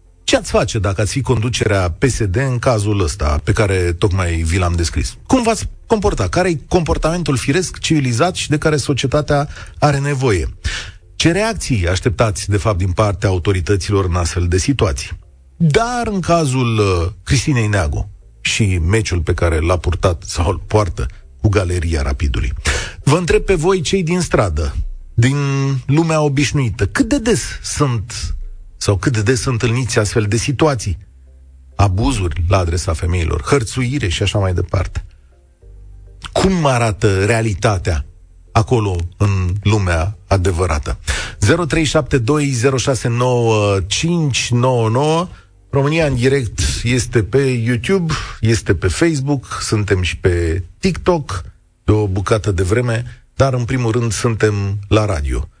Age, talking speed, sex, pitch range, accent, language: 40-59, 135 wpm, male, 90-135 Hz, native, Romanian